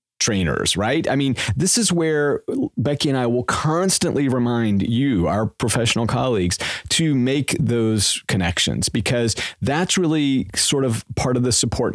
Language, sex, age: English, male, 40-59